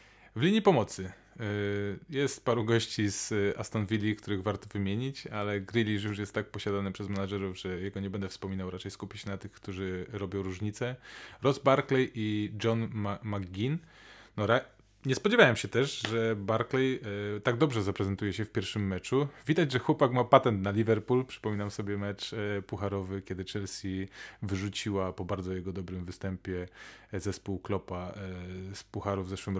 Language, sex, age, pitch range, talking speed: Polish, male, 20-39, 95-115 Hz, 155 wpm